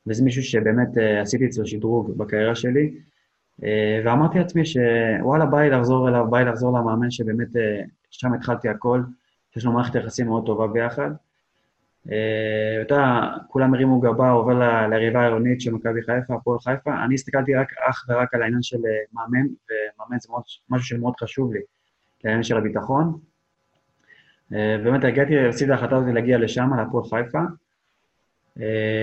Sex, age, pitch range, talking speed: male, 20-39, 110-135 Hz, 155 wpm